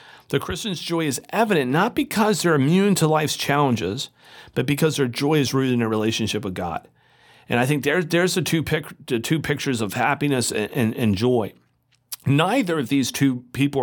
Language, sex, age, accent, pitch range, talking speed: English, male, 40-59, American, 110-150 Hz, 195 wpm